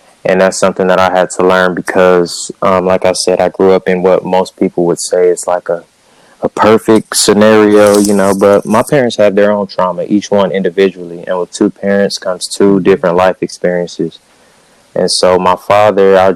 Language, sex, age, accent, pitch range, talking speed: English, male, 20-39, American, 90-100 Hz, 200 wpm